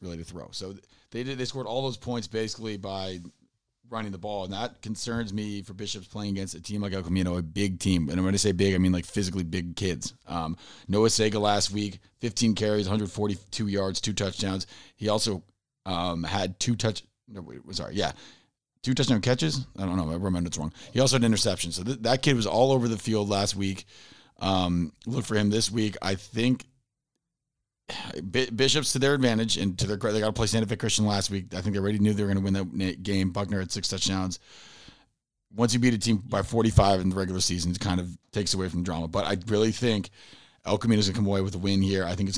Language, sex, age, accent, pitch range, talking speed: English, male, 40-59, American, 95-110 Hz, 240 wpm